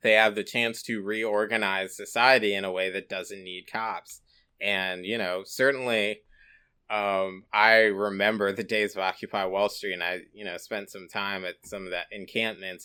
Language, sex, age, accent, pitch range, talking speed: English, male, 20-39, American, 95-115 Hz, 180 wpm